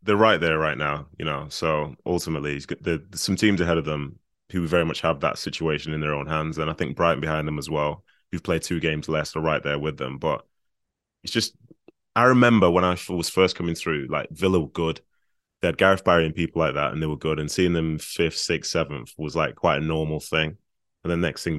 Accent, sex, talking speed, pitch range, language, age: British, male, 240 wpm, 80-100 Hz, English, 20-39